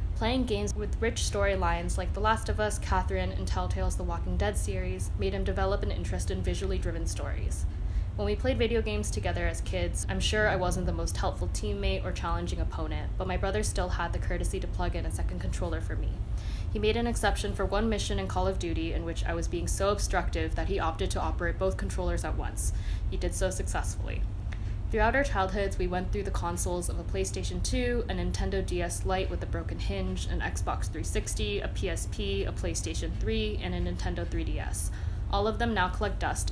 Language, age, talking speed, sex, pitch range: English, 10-29, 210 wpm, female, 90-95 Hz